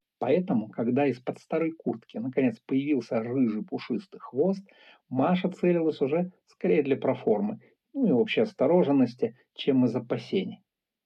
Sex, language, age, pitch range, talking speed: male, Russian, 50-69, 145-200 Hz, 125 wpm